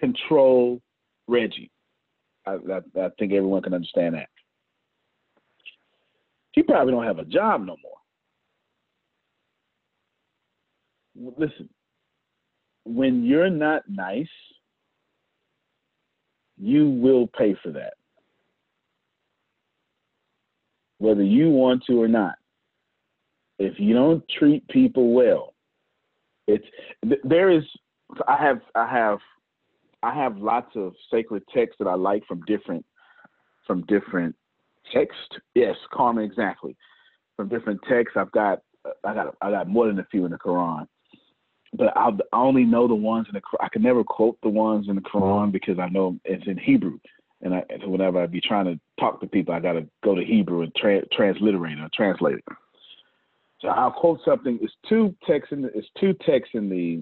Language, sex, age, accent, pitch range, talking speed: English, male, 50-69, American, 95-155 Hz, 150 wpm